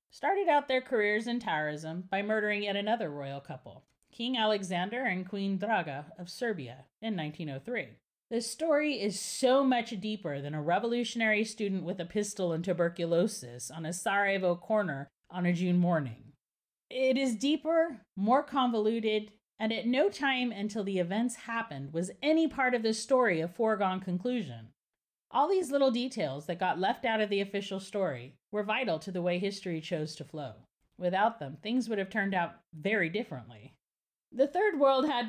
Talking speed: 170 wpm